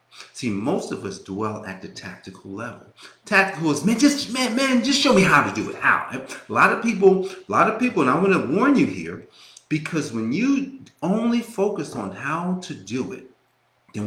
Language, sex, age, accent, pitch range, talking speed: English, male, 40-59, American, 130-190 Hz, 210 wpm